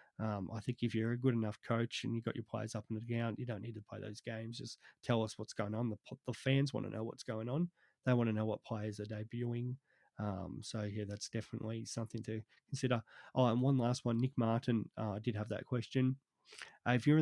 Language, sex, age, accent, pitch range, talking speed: English, male, 20-39, Australian, 110-125 Hz, 245 wpm